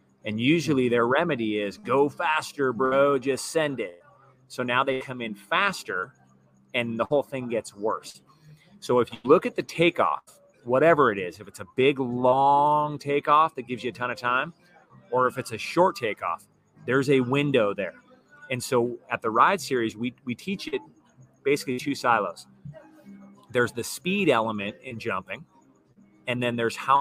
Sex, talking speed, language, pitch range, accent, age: male, 175 wpm, English, 120-145 Hz, American, 30-49